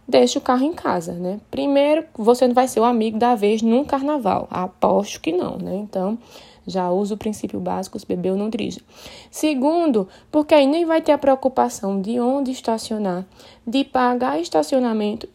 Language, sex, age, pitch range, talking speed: Portuguese, female, 20-39, 200-265 Hz, 180 wpm